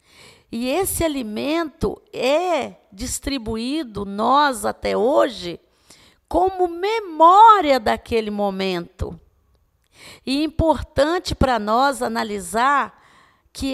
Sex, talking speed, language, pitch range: female, 85 wpm, Portuguese, 235-330 Hz